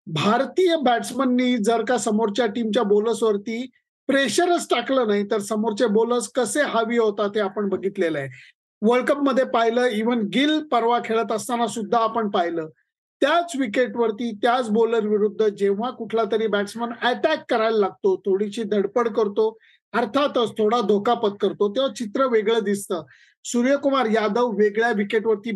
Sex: male